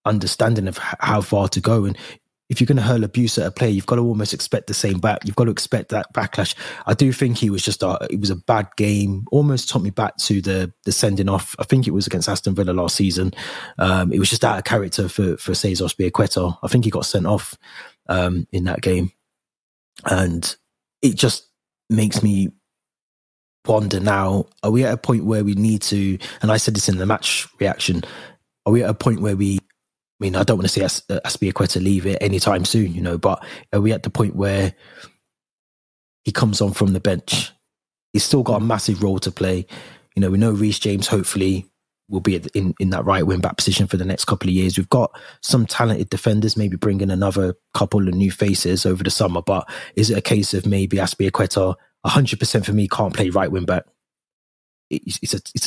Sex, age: male, 20-39